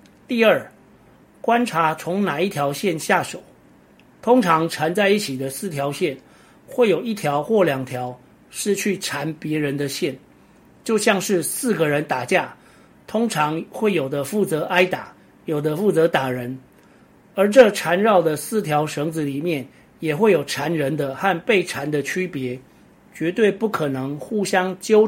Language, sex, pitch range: Chinese, male, 145-195 Hz